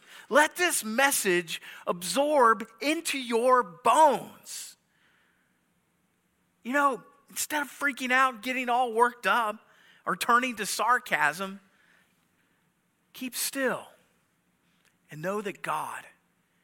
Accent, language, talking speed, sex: American, English, 95 wpm, male